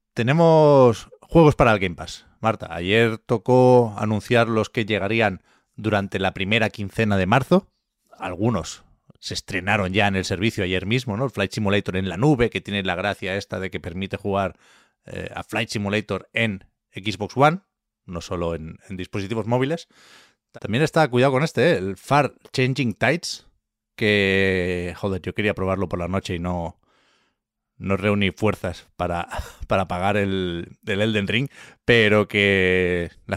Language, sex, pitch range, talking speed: Spanish, male, 95-115 Hz, 160 wpm